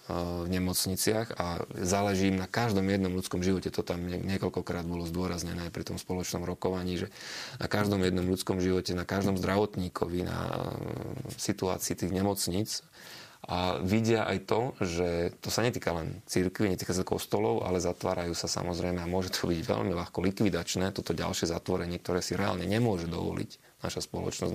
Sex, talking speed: male, 165 wpm